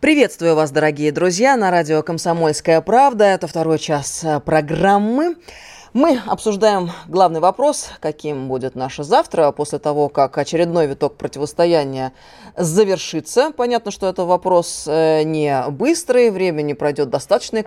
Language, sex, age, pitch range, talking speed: Russian, female, 20-39, 150-195 Hz, 120 wpm